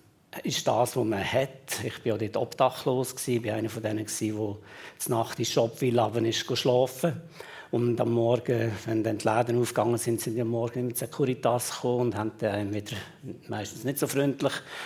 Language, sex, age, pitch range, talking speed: German, male, 60-79, 115-135 Hz, 215 wpm